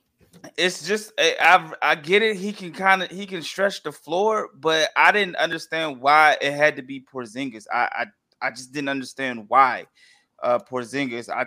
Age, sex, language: 20-39, male, English